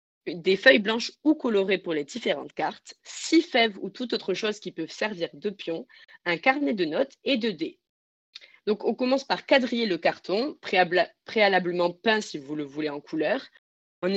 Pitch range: 175-235 Hz